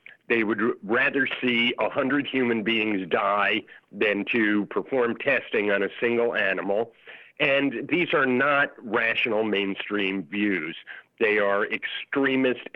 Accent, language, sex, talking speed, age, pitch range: American, English, male, 120 wpm, 50-69, 105-125 Hz